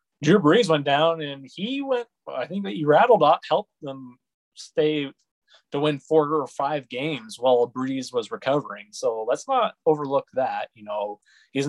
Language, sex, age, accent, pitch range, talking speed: English, male, 20-39, American, 120-145 Hz, 175 wpm